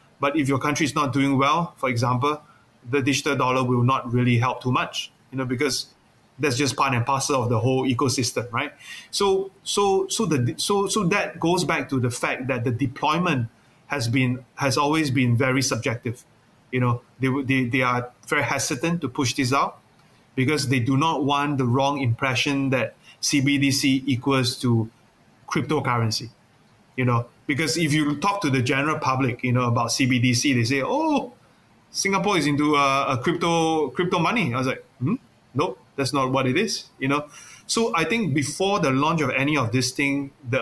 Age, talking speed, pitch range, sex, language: 30-49, 190 wpm, 125-150 Hz, male, English